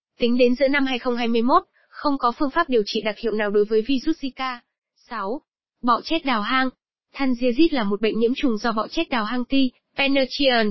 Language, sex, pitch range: Vietnamese, female, 225-270 Hz